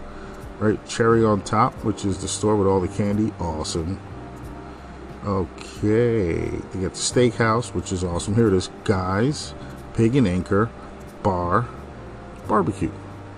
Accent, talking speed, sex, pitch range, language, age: American, 135 wpm, male, 95-110 Hz, English, 40-59